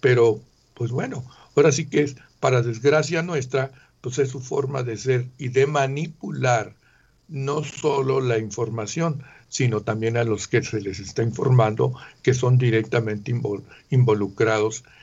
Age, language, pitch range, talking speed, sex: 60-79, Spanish, 110-130 Hz, 145 wpm, male